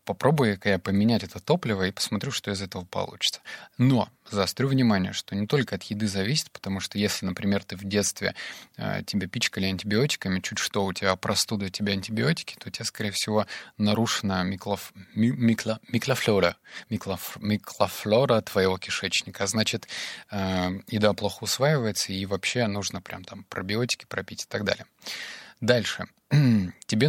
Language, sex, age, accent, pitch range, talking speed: Russian, male, 20-39, native, 100-115 Hz, 155 wpm